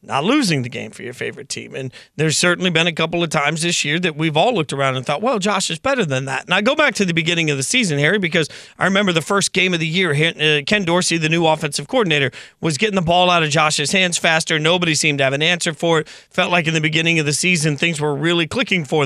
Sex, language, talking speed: male, English, 275 wpm